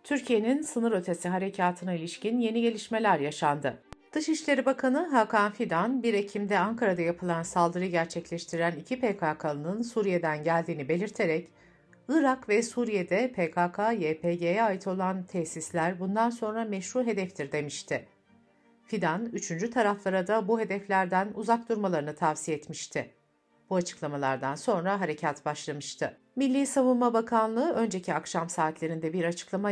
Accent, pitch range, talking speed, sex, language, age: native, 165-220 Hz, 115 wpm, female, Turkish, 60-79